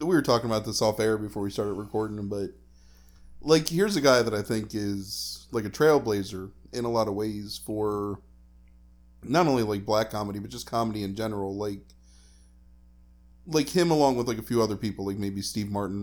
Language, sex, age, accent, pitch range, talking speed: English, male, 20-39, American, 100-115 Hz, 195 wpm